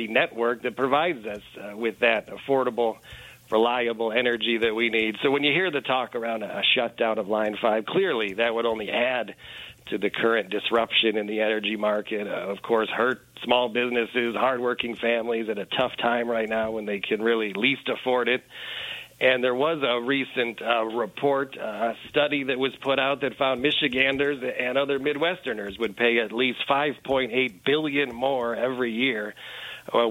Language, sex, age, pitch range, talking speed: English, male, 40-59, 115-135 Hz, 175 wpm